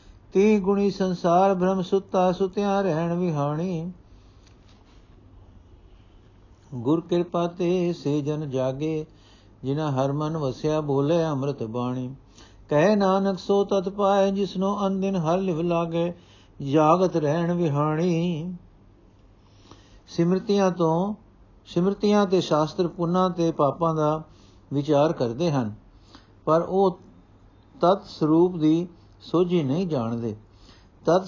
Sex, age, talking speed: male, 60-79, 105 wpm